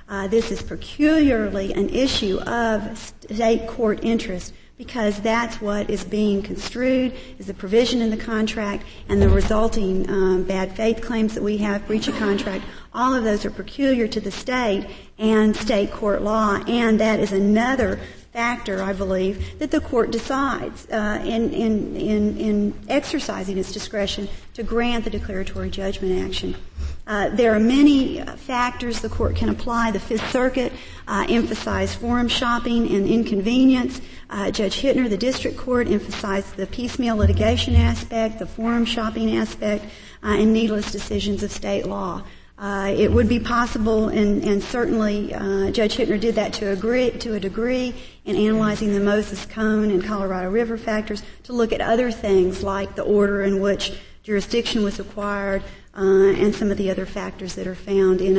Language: English